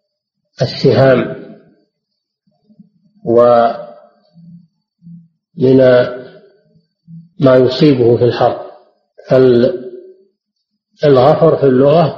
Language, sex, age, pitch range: Arabic, male, 50-69, 130-195 Hz